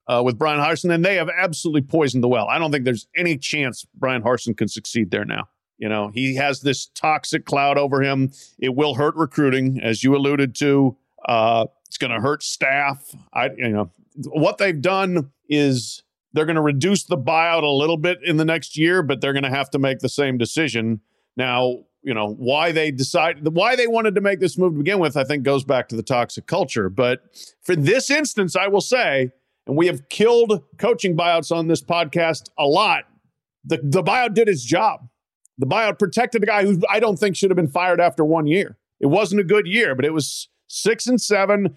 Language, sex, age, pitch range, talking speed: English, male, 40-59, 140-180 Hz, 215 wpm